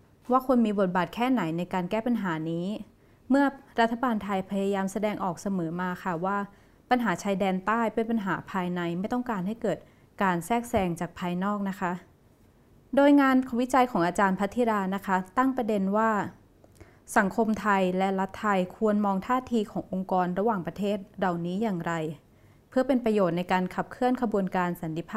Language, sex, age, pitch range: Thai, female, 20-39, 185-235 Hz